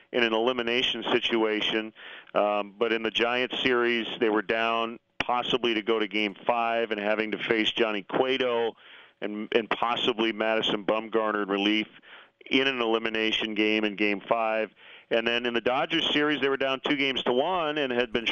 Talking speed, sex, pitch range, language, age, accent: 180 wpm, male, 110-125 Hz, English, 40-59, American